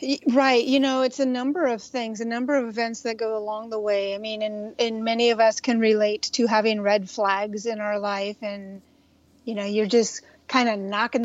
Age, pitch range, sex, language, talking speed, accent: 40-59, 215-255 Hz, female, English, 215 wpm, American